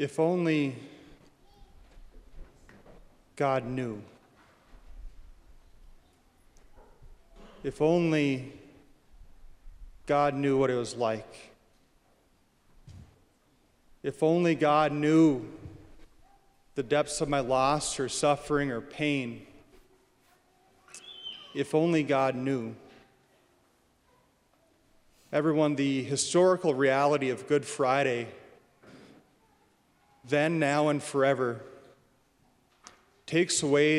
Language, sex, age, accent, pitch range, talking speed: English, male, 30-49, American, 125-155 Hz, 75 wpm